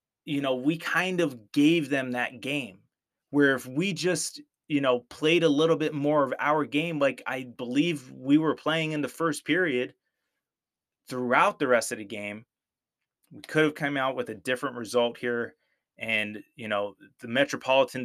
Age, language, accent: 20-39, English, American